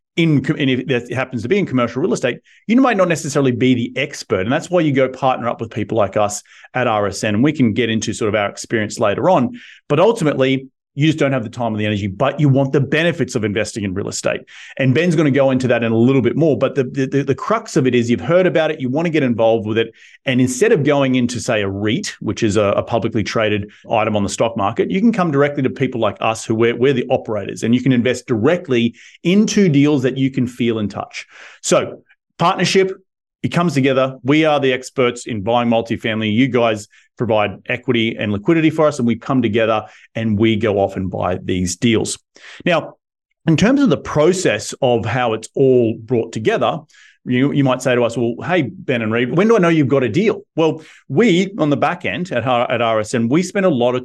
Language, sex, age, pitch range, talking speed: English, male, 30-49, 115-150 Hz, 240 wpm